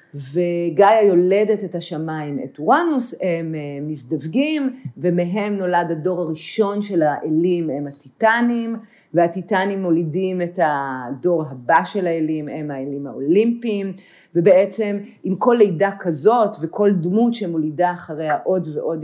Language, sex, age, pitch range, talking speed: Hebrew, female, 40-59, 160-200 Hz, 115 wpm